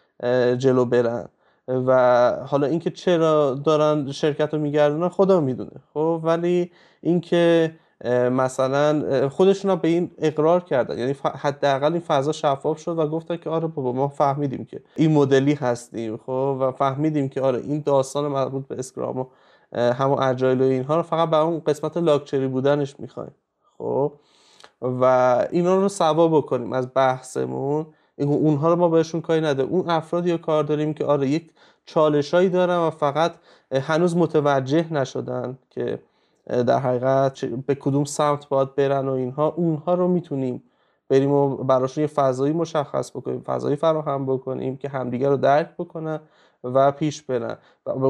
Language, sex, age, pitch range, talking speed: Persian, male, 20-39, 135-160 Hz, 150 wpm